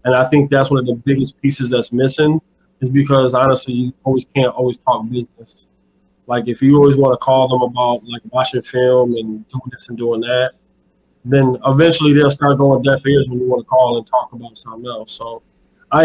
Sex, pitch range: male, 125-140 Hz